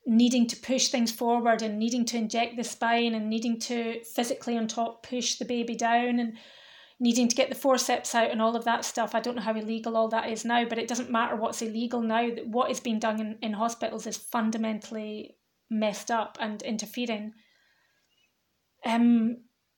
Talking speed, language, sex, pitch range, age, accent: 195 wpm, English, female, 225-245 Hz, 30-49, British